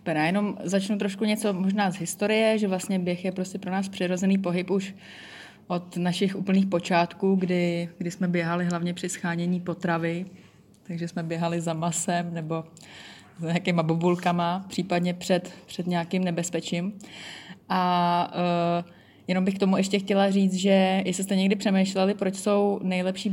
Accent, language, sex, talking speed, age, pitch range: native, Czech, female, 155 wpm, 20-39, 170-190 Hz